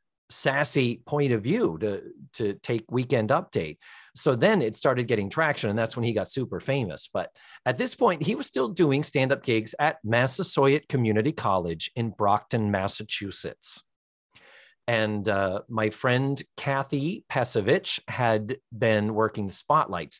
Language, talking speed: English, 150 wpm